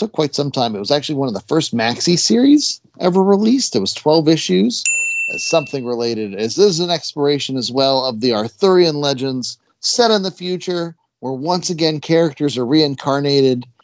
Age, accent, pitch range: 40-59, American, 125-160 Hz